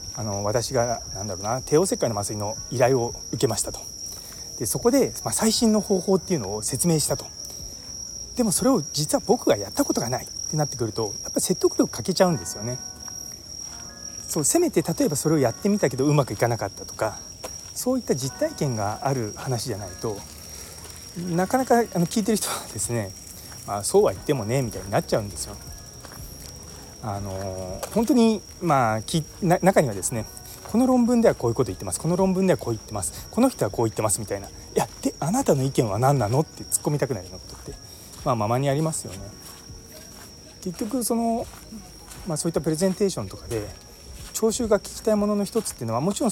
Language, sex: Japanese, male